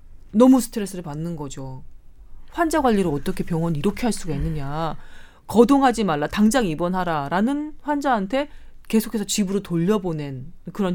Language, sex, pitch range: Korean, female, 155-220 Hz